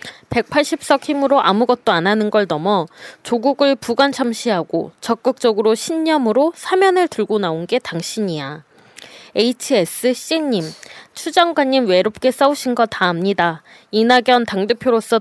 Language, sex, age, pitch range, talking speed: English, female, 20-39, 200-265 Hz, 95 wpm